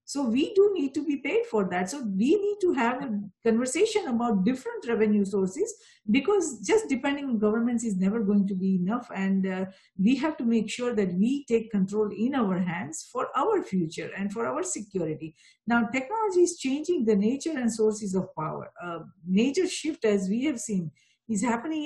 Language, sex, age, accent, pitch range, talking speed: English, female, 50-69, Indian, 210-315 Hz, 195 wpm